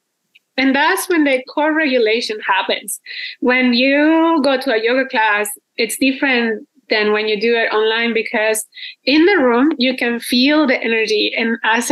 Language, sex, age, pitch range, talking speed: English, female, 20-39, 225-285 Hz, 165 wpm